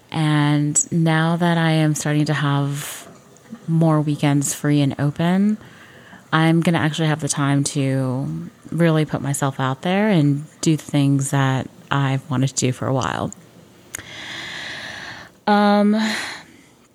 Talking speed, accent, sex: 135 wpm, American, female